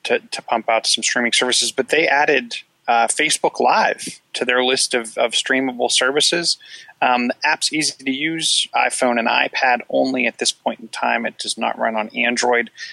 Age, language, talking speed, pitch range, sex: 30-49, English, 190 wpm, 120-135 Hz, male